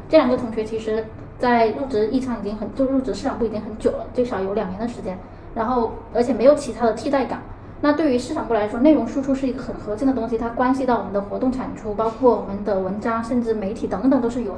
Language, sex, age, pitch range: Chinese, female, 10-29, 220-270 Hz